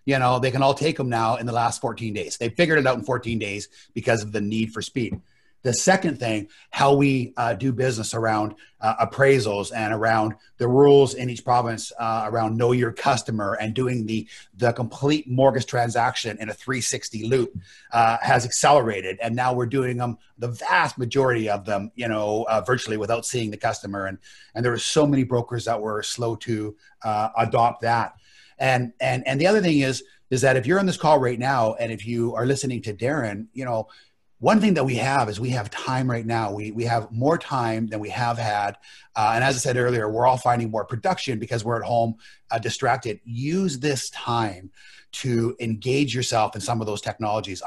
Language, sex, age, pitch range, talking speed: English, male, 30-49, 110-130 Hz, 210 wpm